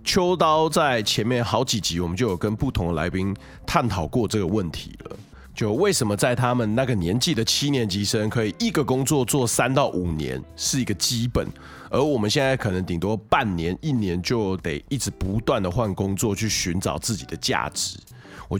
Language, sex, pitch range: Chinese, male, 95-130 Hz